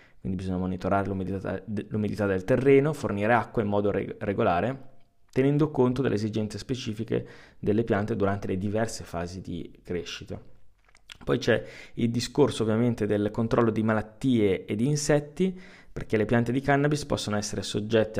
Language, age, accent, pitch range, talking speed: Italian, 20-39, native, 95-125 Hz, 145 wpm